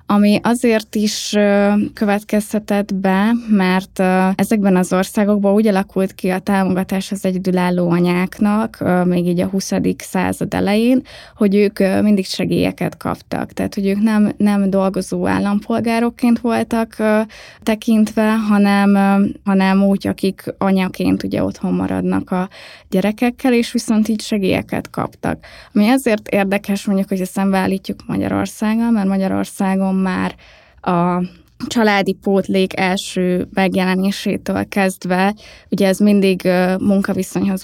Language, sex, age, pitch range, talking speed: Hungarian, female, 20-39, 190-215 Hz, 115 wpm